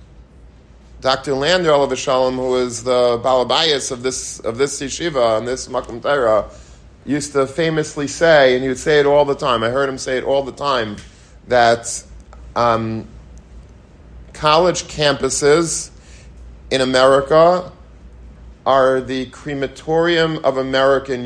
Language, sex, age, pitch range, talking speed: English, male, 40-59, 100-135 Hz, 135 wpm